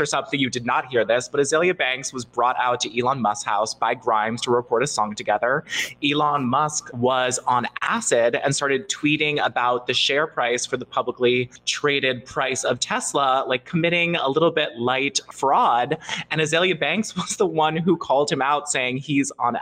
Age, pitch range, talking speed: 20-39, 125-160 Hz, 195 wpm